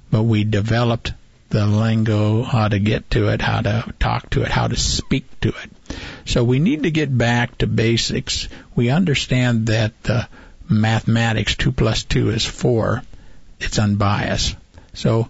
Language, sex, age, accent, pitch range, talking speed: English, male, 60-79, American, 105-120 Hz, 160 wpm